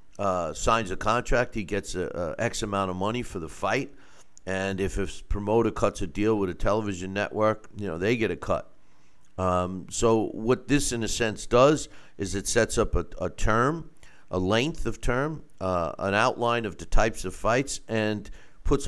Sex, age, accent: male, 50-69, American